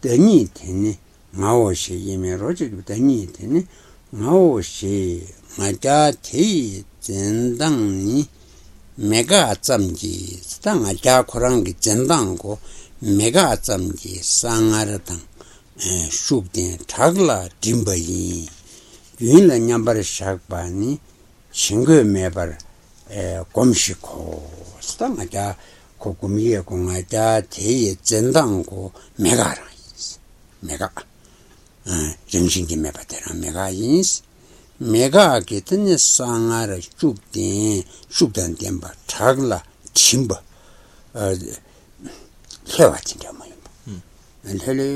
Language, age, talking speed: Italian, 60-79, 35 wpm